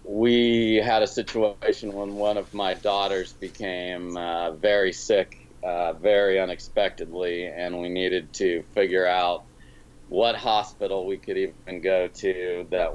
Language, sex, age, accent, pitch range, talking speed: English, male, 40-59, American, 85-105 Hz, 140 wpm